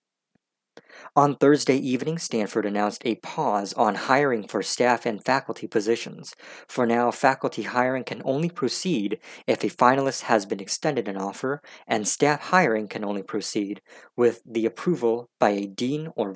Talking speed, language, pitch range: 155 wpm, English, 110-145 Hz